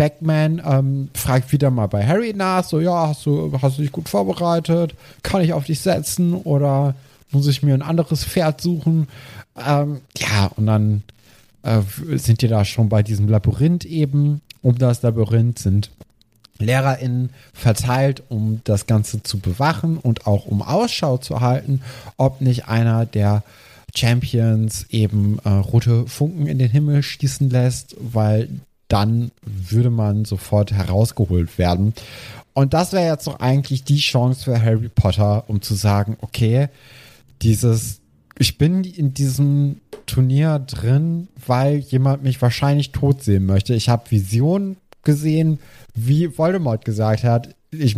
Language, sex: German, male